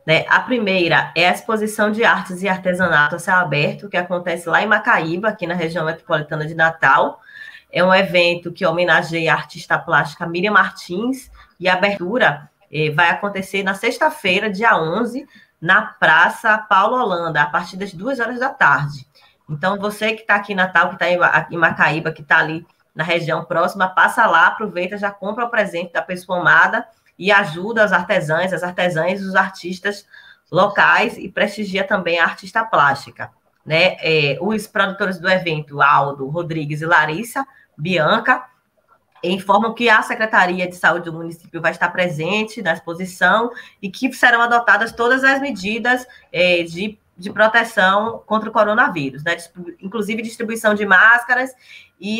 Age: 20-39